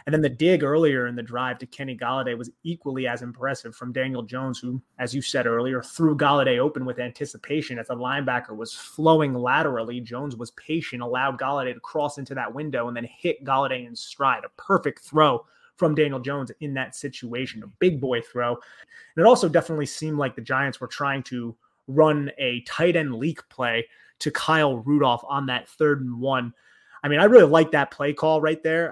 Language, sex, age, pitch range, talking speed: English, male, 30-49, 125-150 Hz, 205 wpm